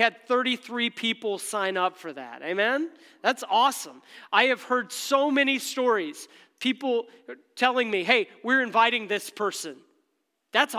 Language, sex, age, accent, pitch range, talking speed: English, male, 40-59, American, 190-310 Hz, 140 wpm